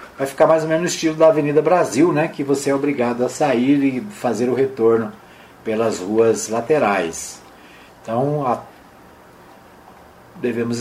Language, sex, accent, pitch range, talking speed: Portuguese, male, Brazilian, 125-160 Hz, 145 wpm